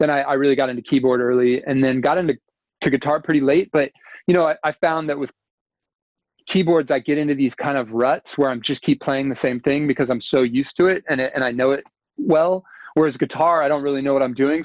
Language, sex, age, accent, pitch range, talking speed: Indonesian, male, 30-49, American, 125-145 Hz, 255 wpm